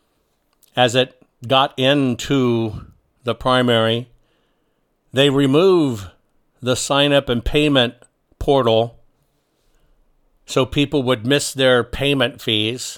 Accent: American